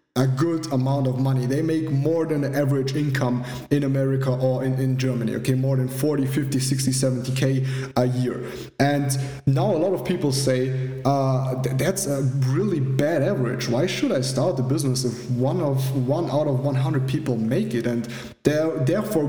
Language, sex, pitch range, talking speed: English, male, 130-145 Hz, 180 wpm